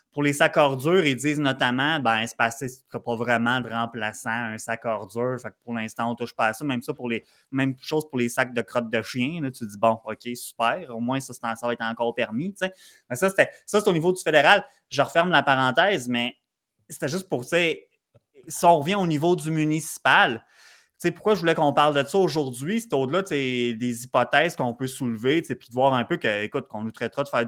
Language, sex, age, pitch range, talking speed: French, male, 20-39, 130-175 Hz, 235 wpm